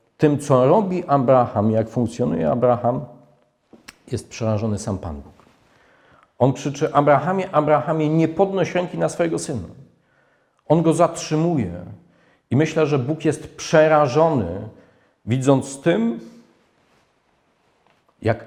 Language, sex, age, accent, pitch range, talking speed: Polish, male, 40-59, native, 115-145 Hz, 110 wpm